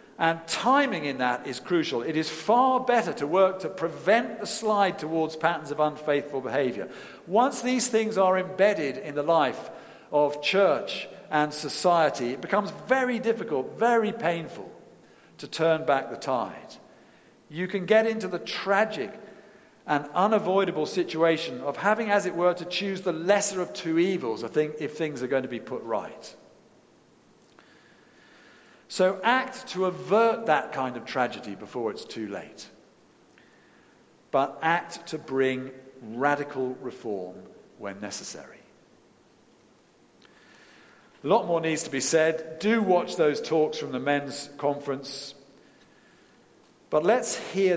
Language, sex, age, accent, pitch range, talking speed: English, male, 50-69, British, 145-200 Hz, 140 wpm